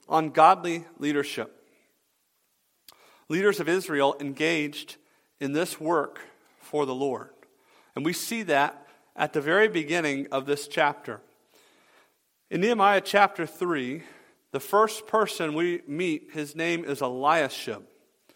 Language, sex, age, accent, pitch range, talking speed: English, male, 40-59, American, 150-200 Hz, 120 wpm